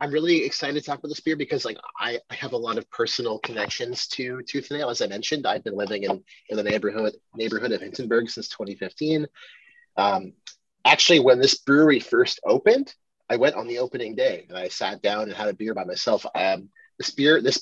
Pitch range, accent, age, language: 120-200 Hz, American, 30-49, English